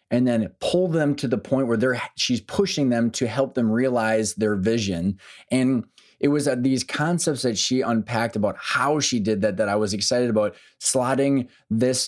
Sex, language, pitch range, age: male, English, 110-130 Hz, 20-39